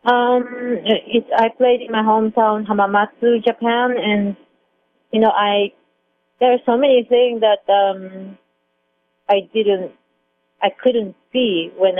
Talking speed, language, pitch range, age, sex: 130 wpm, English, 180-215 Hz, 30-49, female